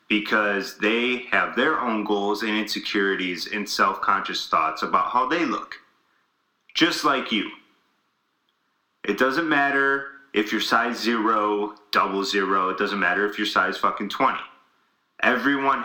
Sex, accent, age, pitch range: male, American, 30-49, 105-135 Hz